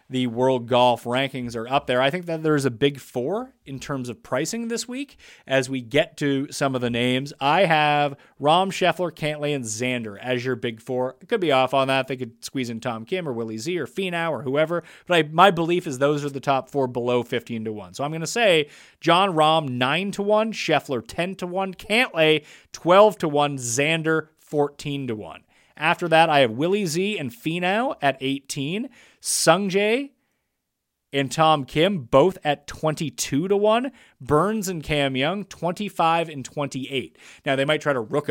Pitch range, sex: 130-180 Hz, male